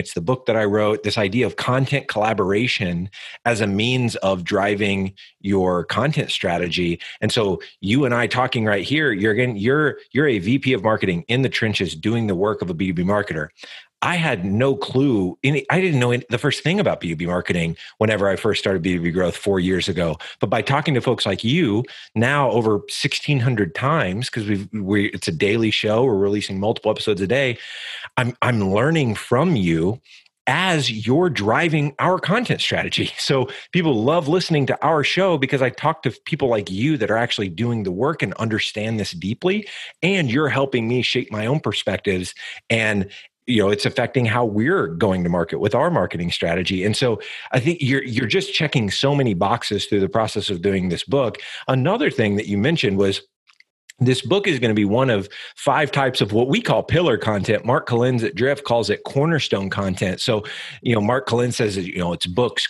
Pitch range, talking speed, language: 100-135 Hz, 200 wpm, English